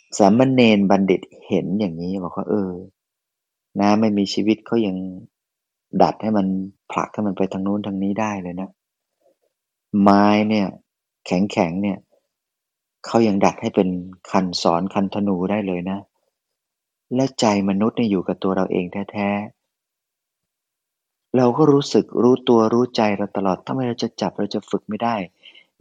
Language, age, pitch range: Thai, 30-49, 95-110 Hz